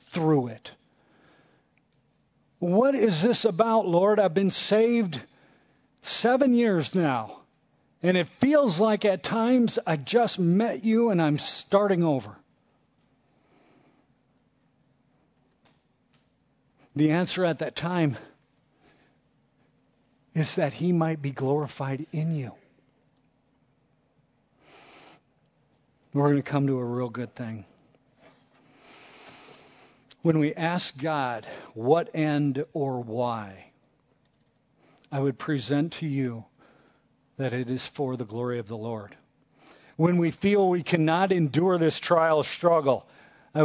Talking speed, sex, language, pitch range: 110 wpm, male, English, 140-195 Hz